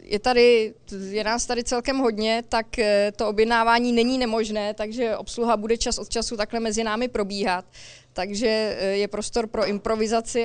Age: 20-39